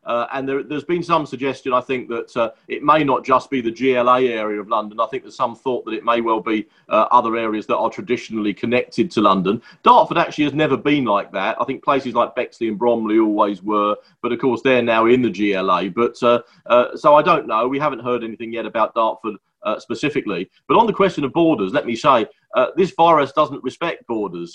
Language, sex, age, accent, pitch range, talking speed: English, male, 40-59, British, 115-135 Hz, 230 wpm